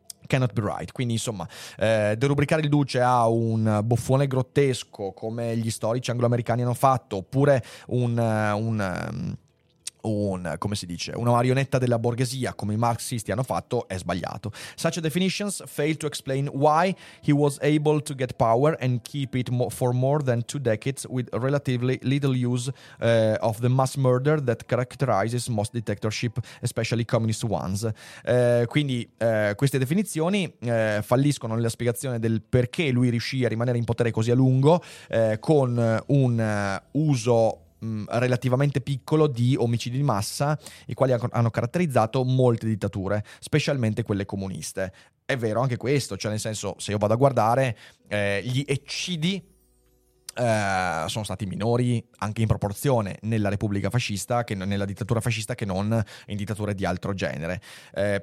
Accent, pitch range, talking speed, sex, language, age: native, 110-135 Hz, 120 wpm, male, Italian, 30-49